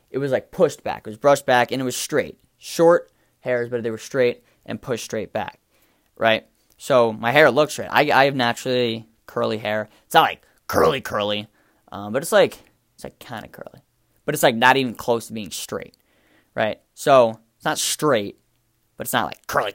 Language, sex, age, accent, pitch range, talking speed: English, male, 10-29, American, 110-135 Hz, 205 wpm